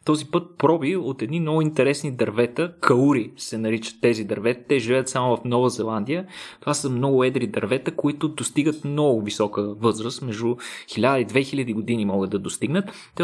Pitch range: 120-155 Hz